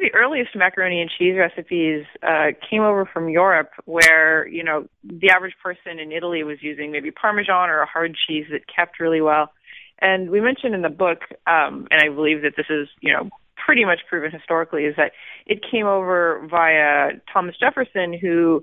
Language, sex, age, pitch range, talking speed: English, female, 20-39, 155-195 Hz, 190 wpm